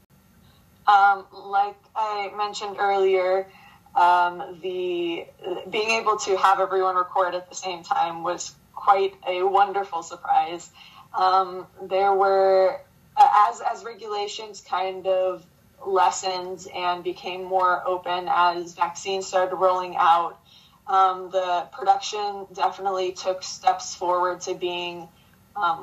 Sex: female